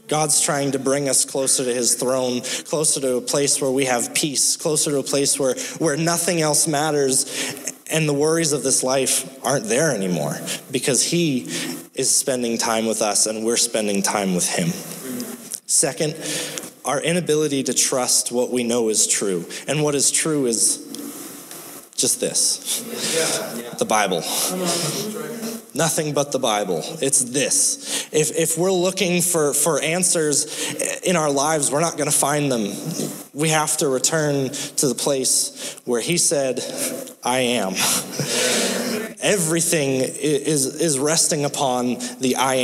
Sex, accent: male, American